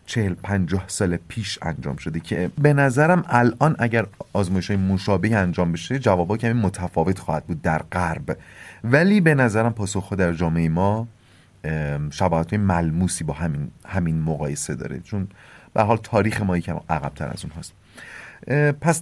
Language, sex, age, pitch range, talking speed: Persian, male, 30-49, 90-135 Hz, 150 wpm